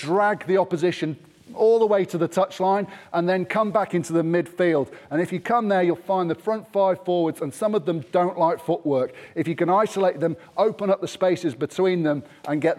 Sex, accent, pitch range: male, British, 155-190 Hz